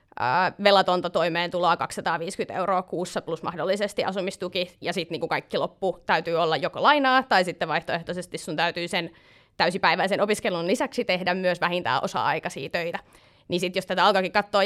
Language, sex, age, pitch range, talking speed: Finnish, female, 30-49, 170-200 Hz, 150 wpm